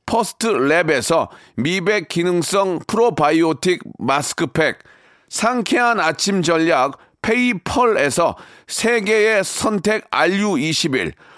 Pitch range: 175-225 Hz